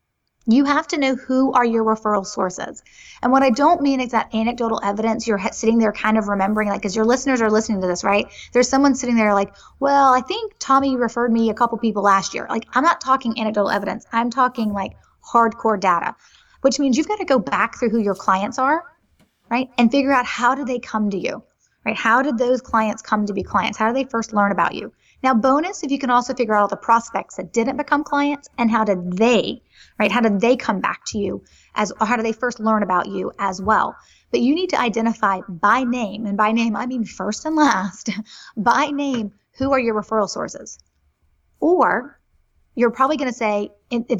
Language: English